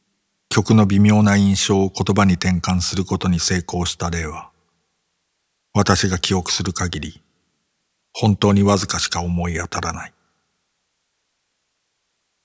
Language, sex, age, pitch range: Japanese, male, 50-69, 90-100 Hz